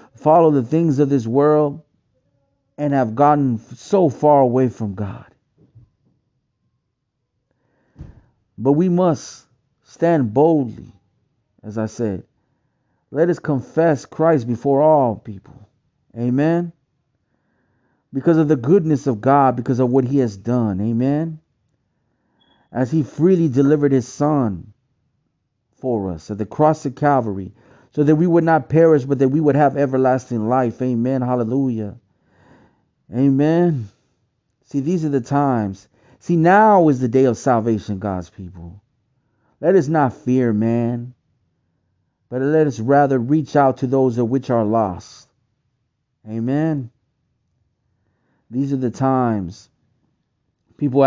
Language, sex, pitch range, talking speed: English, male, 115-145 Hz, 130 wpm